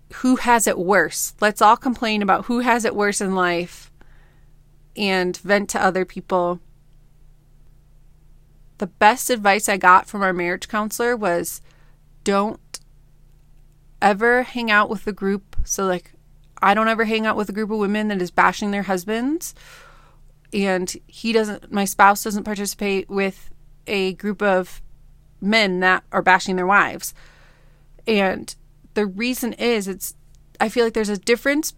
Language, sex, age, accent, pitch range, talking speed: English, female, 30-49, American, 150-220 Hz, 155 wpm